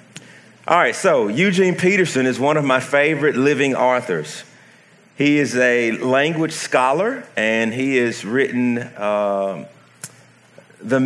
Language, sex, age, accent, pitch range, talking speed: English, male, 40-59, American, 100-130 Hz, 125 wpm